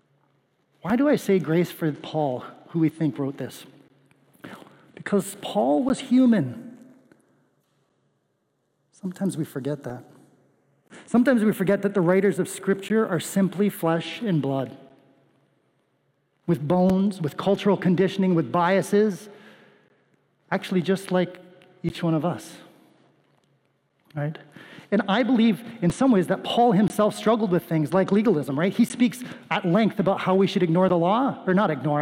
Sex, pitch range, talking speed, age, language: male, 165-210 Hz, 145 wpm, 40-59, English